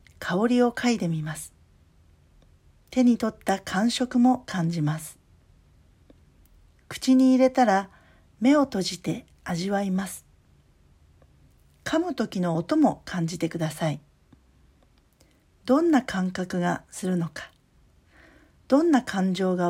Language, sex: Japanese, female